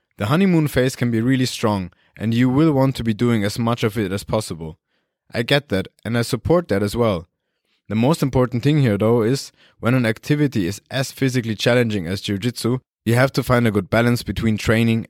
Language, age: English, 20-39